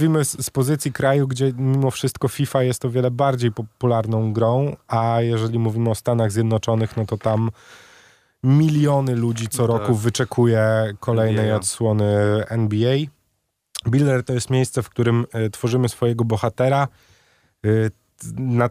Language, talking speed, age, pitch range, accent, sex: Polish, 130 wpm, 20-39, 105-130 Hz, native, male